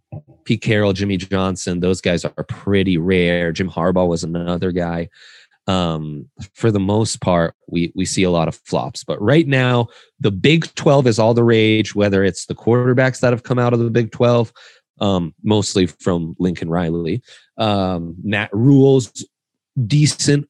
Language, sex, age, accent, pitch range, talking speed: English, male, 30-49, American, 95-130 Hz, 165 wpm